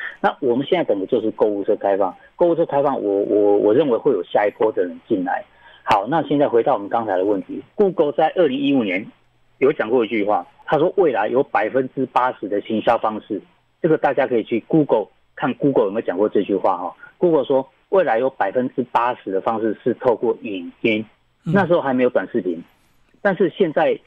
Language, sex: Chinese, male